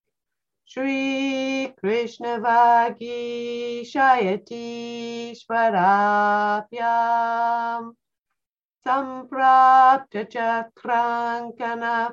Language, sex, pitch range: English, female, 215-255 Hz